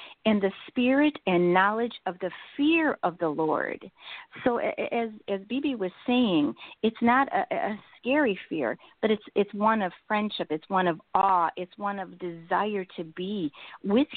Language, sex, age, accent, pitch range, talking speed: English, female, 50-69, American, 175-230 Hz, 170 wpm